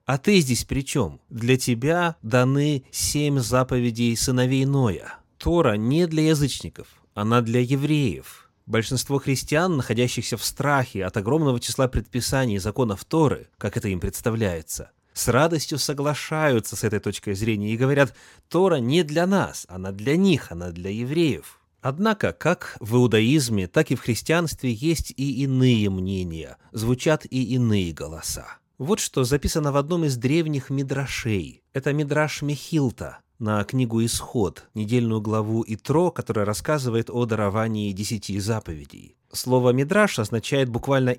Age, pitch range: 30-49, 110-140 Hz